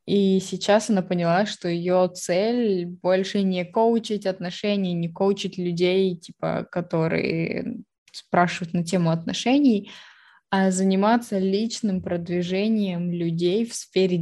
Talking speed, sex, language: 115 wpm, female, Russian